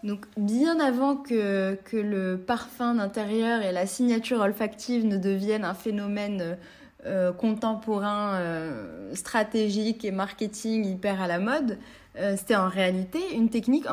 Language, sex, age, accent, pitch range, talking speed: French, female, 20-39, French, 195-255 Hz, 140 wpm